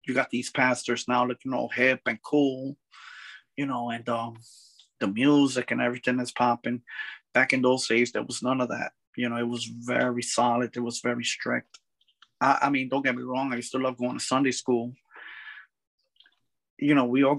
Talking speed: 200 wpm